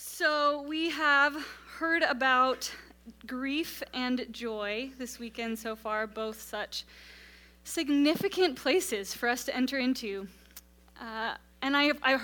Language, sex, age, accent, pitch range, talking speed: English, female, 20-39, American, 225-275 Hz, 125 wpm